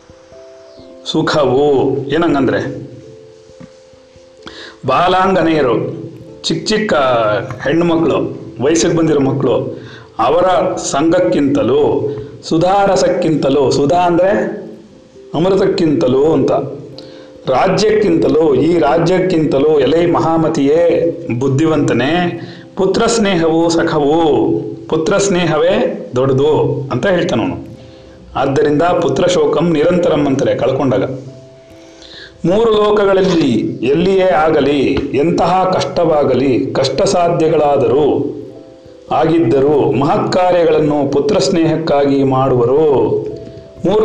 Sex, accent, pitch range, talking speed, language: male, native, 145-190 Hz, 70 wpm, Kannada